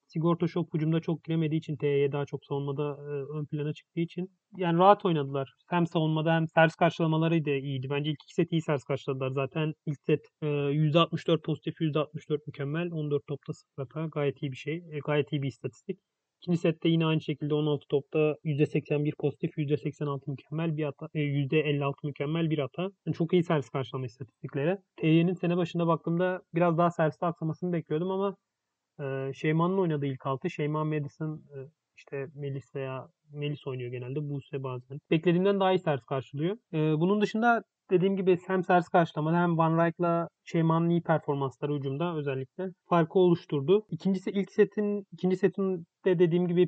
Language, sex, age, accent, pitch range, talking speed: Turkish, male, 30-49, native, 145-175 Hz, 175 wpm